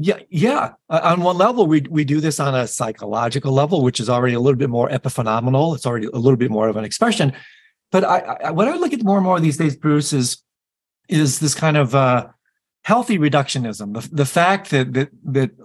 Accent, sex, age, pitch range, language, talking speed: American, male, 40-59, 135-180 Hz, English, 215 wpm